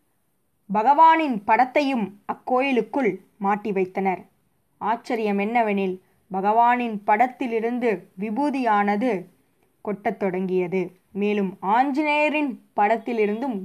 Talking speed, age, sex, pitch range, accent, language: 65 wpm, 20-39, female, 195-245 Hz, native, Tamil